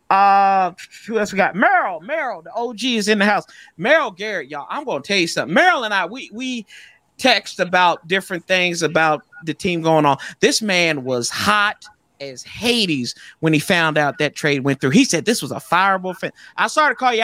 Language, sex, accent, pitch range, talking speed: English, male, American, 140-200 Hz, 210 wpm